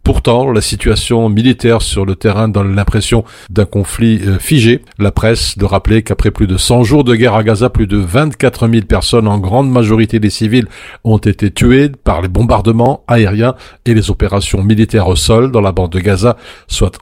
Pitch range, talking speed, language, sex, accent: 100-120 Hz, 190 wpm, French, male, French